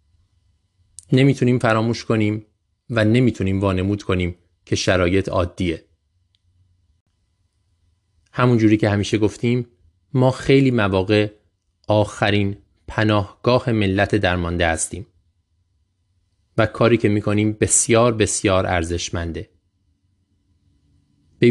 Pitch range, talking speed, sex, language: 90-110 Hz, 85 wpm, male, Persian